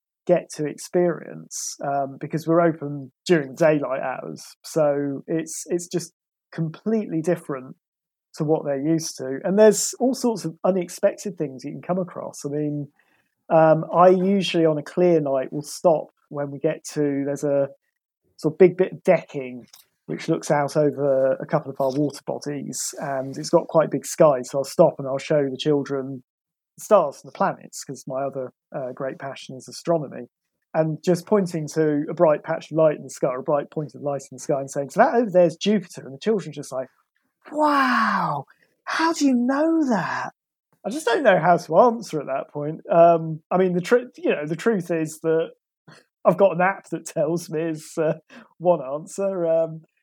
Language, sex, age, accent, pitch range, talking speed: English, male, 20-39, British, 145-180 Hz, 195 wpm